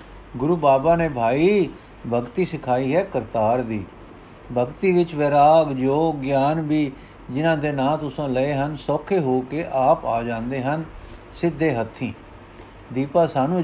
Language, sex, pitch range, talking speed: Punjabi, male, 120-160 Hz, 140 wpm